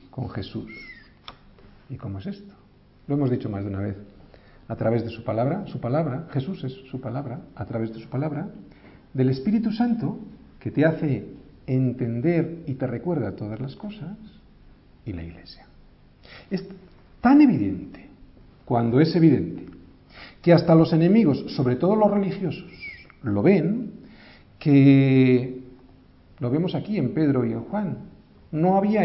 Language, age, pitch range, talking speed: Spanish, 50-69, 115-190 Hz, 150 wpm